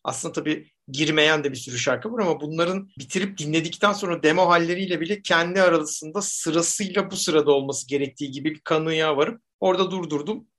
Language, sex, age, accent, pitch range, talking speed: Turkish, male, 60-79, native, 140-185 Hz, 165 wpm